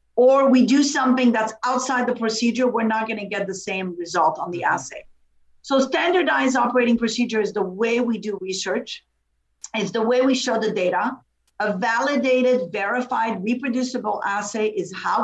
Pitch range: 195-255 Hz